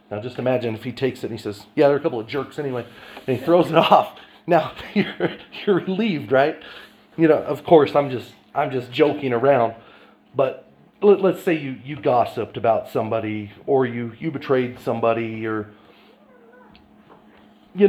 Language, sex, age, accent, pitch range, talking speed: English, male, 40-59, American, 120-155 Hz, 180 wpm